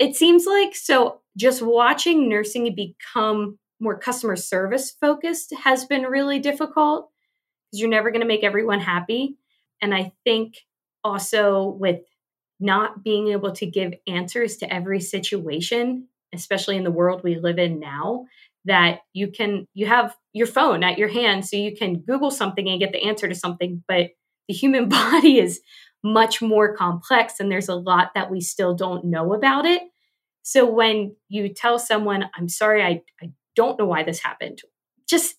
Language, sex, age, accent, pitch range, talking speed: English, female, 20-39, American, 185-240 Hz, 170 wpm